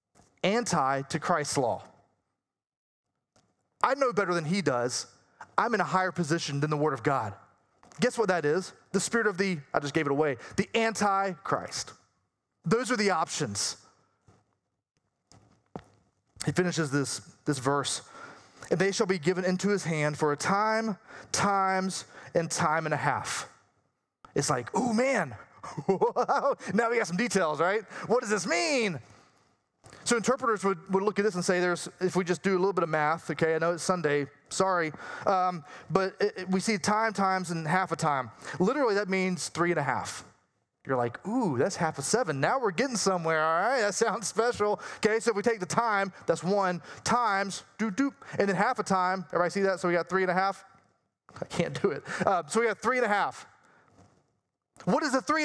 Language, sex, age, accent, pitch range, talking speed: English, male, 30-49, American, 165-220 Hz, 190 wpm